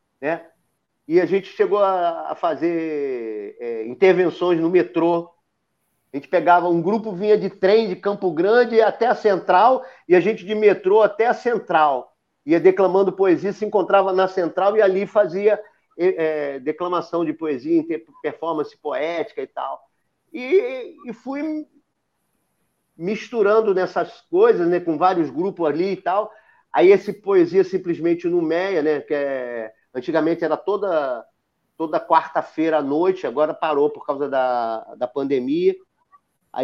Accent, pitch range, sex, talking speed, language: Brazilian, 160-225 Hz, male, 140 wpm, Portuguese